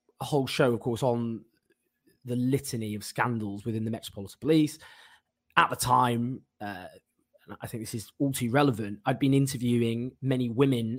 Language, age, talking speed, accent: English, 20-39, 170 wpm, British